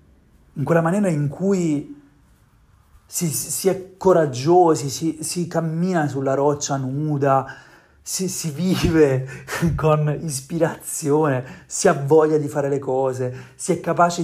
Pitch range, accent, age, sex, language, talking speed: 130-155 Hz, native, 30-49, male, Italian, 125 wpm